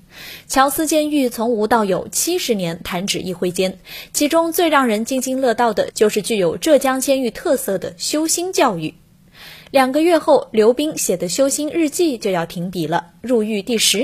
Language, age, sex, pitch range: Chinese, 20-39, female, 190-275 Hz